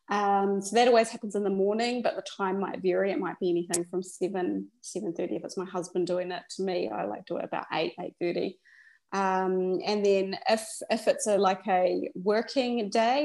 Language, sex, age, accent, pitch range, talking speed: English, female, 20-39, Australian, 185-230 Hz, 220 wpm